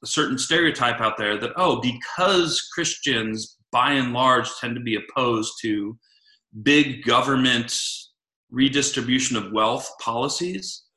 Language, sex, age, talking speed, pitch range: English, male, 30-49, 120 wpm, 110-145 Hz